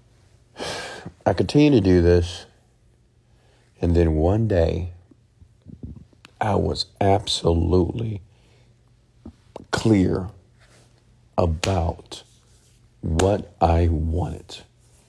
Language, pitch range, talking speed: English, 85-115 Hz, 70 wpm